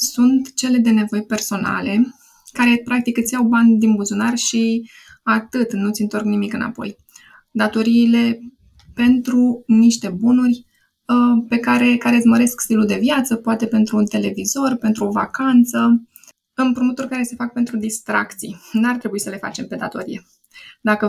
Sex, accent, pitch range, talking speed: female, native, 205-240 Hz, 145 wpm